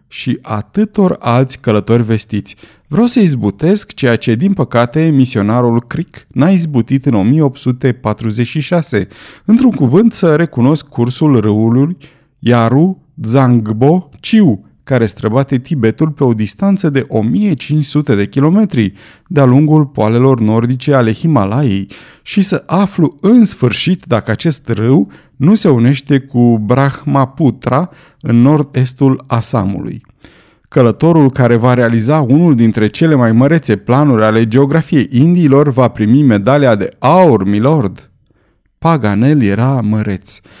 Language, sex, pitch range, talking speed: Romanian, male, 110-150 Hz, 115 wpm